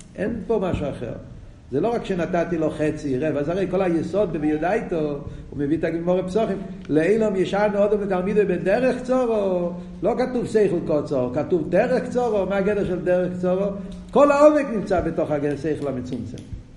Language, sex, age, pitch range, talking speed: Hebrew, male, 50-69, 155-220 Hz, 155 wpm